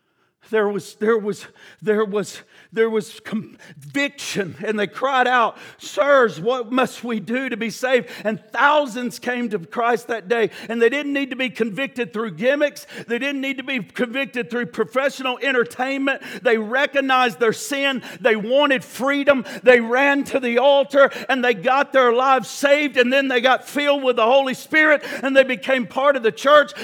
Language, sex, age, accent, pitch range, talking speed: English, male, 50-69, American, 235-285 Hz, 180 wpm